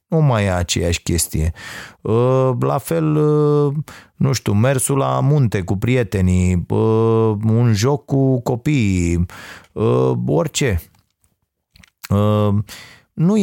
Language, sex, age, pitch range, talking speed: Romanian, male, 30-49, 100-150 Hz, 90 wpm